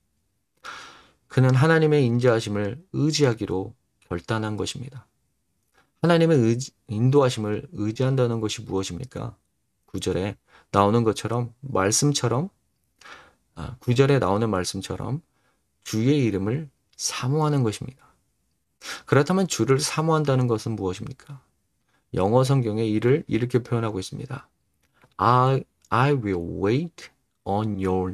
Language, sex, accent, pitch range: Korean, male, native, 105-130 Hz